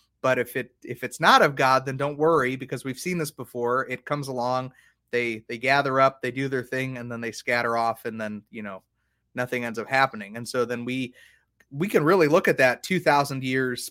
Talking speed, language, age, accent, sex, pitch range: 225 wpm, English, 30-49, American, male, 120-140 Hz